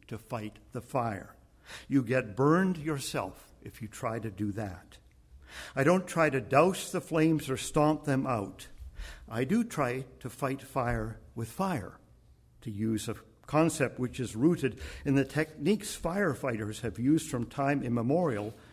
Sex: male